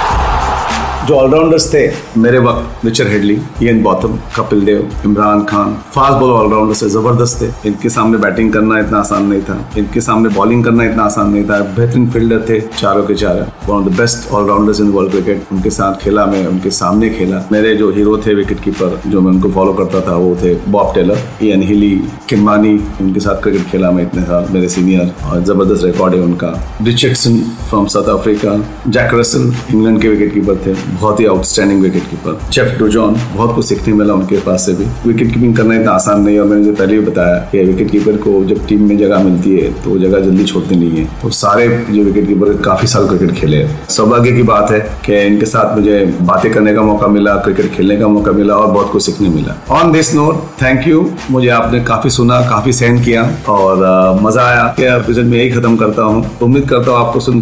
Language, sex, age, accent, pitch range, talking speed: Hindi, male, 40-59, native, 100-115 Hz, 190 wpm